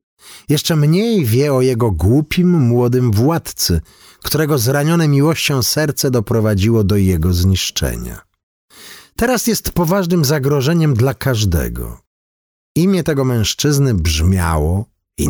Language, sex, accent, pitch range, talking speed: Polish, male, native, 90-145 Hz, 105 wpm